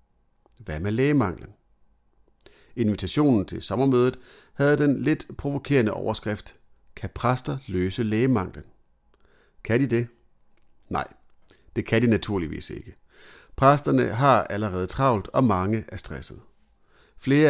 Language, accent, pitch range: Danish, native, 95-130 Hz